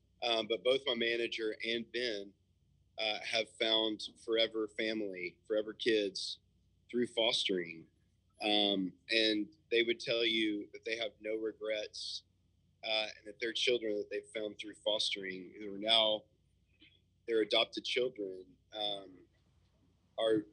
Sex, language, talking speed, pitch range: male, English, 130 wpm, 100-115 Hz